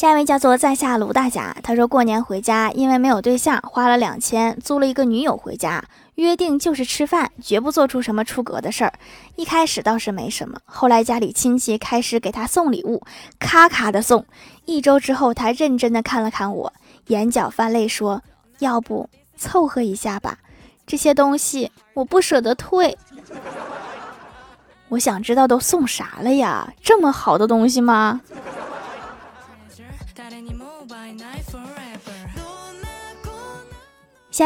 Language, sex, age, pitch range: Chinese, female, 20-39, 220-275 Hz